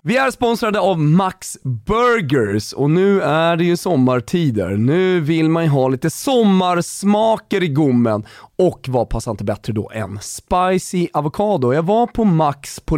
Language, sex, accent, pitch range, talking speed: Swedish, male, native, 125-190 Hz, 160 wpm